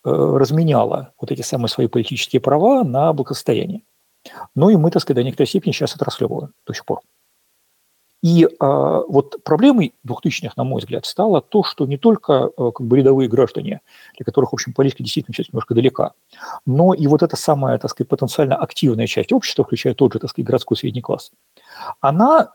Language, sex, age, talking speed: Russian, male, 50-69, 190 wpm